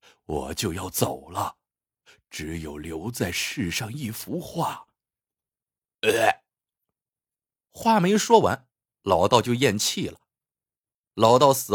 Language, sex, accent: Chinese, male, native